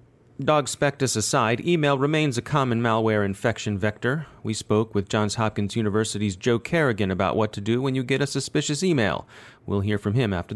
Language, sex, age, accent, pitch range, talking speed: English, male, 30-49, American, 105-135 Hz, 190 wpm